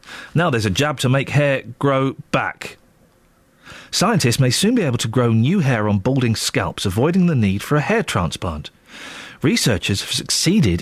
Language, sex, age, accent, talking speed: English, male, 40-59, British, 170 wpm